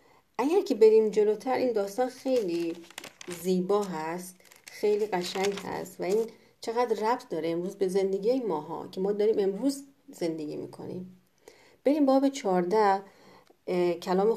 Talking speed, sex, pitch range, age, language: 130 wpm, female, 185-250 Hz, 40-59, Persian